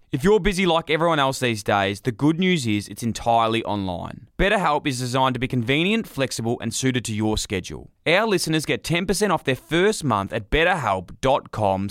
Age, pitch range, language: 20-39, 105-155 Hz, English